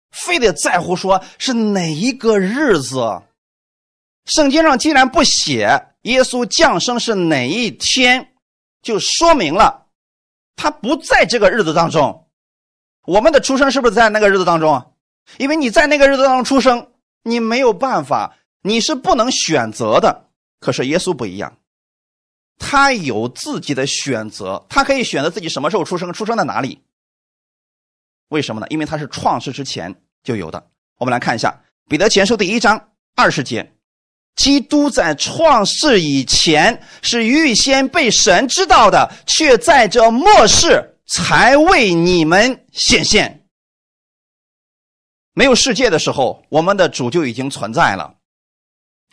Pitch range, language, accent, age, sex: 165-275 Hz, Chinese, native, 30-49, male